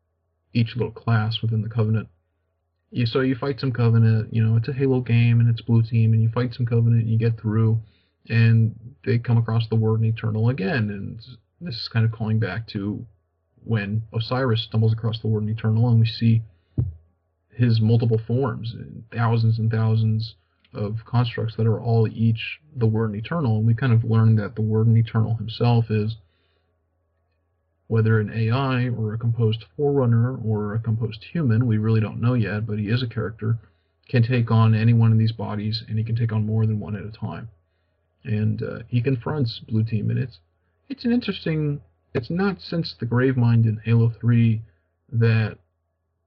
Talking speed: 190 wpm